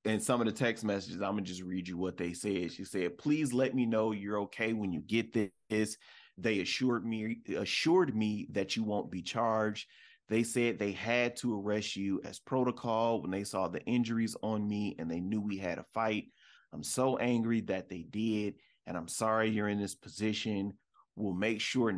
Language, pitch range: English, 100-115 Hz